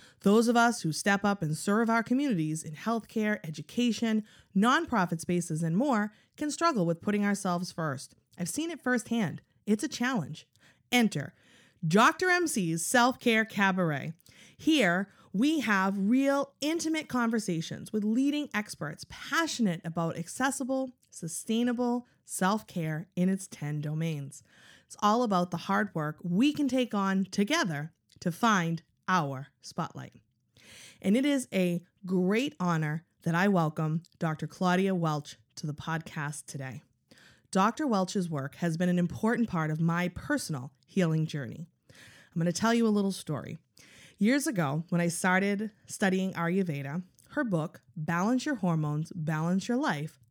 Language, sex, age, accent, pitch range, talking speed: English, female, 30-49, American, 160-230 Hz, 145 wpm